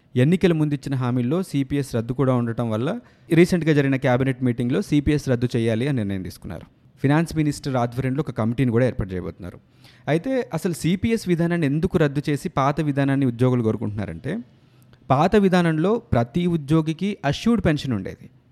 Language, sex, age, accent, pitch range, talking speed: Telugu, male, 30-49, native, 125-160 Hz, 145 wpm